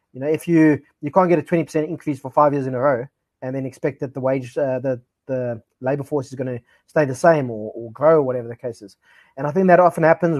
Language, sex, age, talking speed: English, male, 30-49, 270 wpm